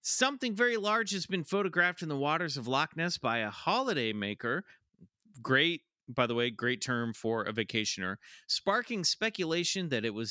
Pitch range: 125-185 Hz